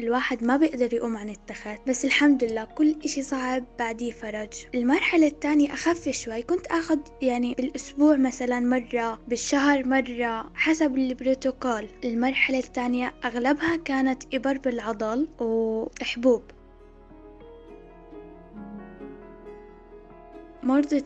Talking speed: 105 wpm